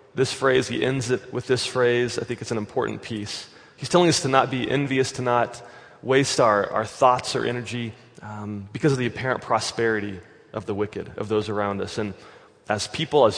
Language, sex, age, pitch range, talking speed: English, male, 20-39, 105-125 Hz, 205 wpm